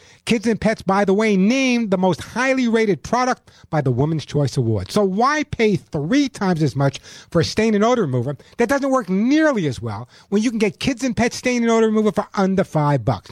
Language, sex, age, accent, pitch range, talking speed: English, male, 50-69, American, 170-230 Hz, 230 wpm